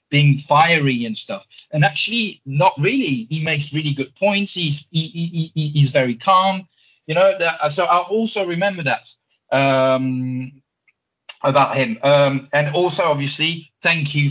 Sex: male